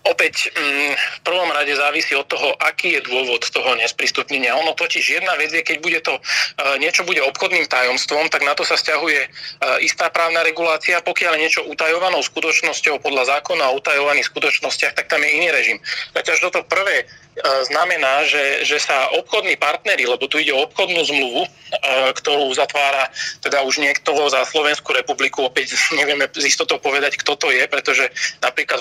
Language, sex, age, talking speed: Slovak, male, 30-49, 165 wpm